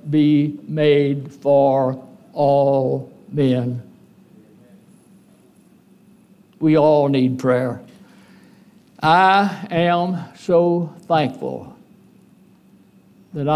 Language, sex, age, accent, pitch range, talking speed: English, male, 60-79, American, 145-200 Hz, 60 wpm